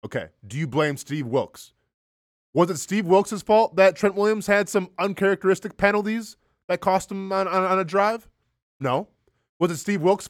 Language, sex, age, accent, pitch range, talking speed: English, male, 20-39, American, 160-210 Hz, 180 wpm